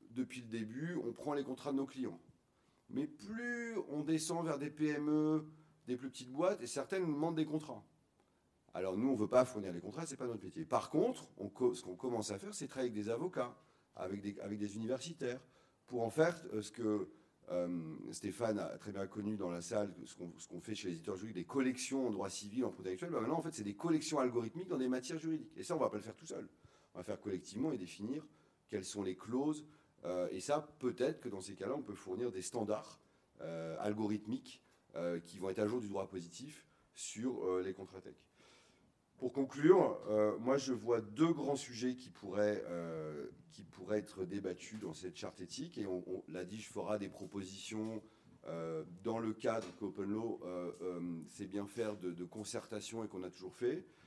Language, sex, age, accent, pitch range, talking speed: French, male, 40-59, French, 100-135 Hz, 220 wpm